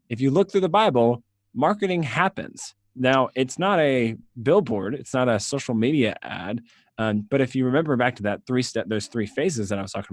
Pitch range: 105-130 Hz